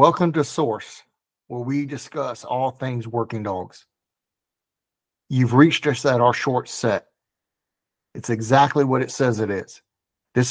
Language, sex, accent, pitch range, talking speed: English, male, American, 115-140 Hz, 145 wpm